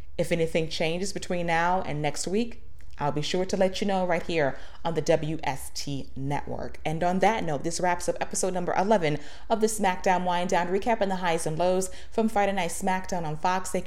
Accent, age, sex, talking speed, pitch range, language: American, 30-49, female, 210 wpm, 170-210 Hz, English